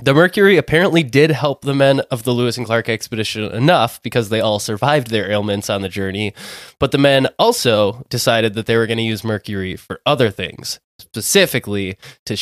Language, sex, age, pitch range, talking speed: English, male, 20-39, 110-140 Hz, 195 wpm